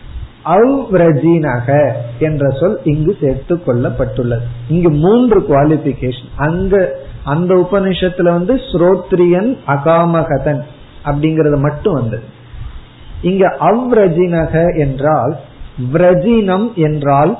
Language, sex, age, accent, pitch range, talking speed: Tamil, male, 50-69, native, 140-185 Hz, 70 wpm